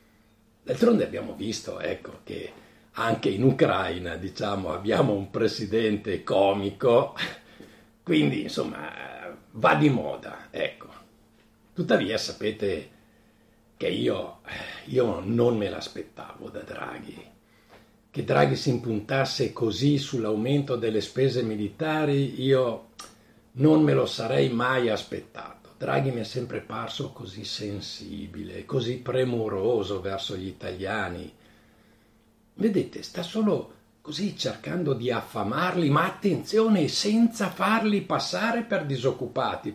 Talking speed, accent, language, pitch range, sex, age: 105 wpm, native, Italian, 105-155 Hz, male, 60-79